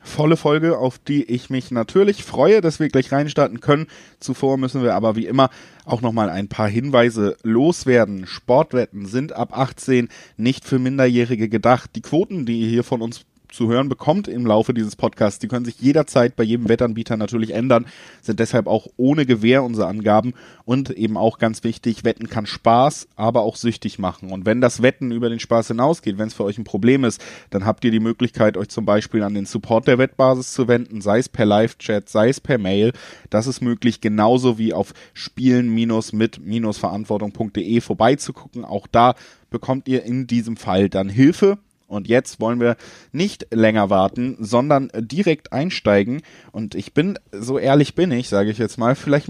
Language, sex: German, male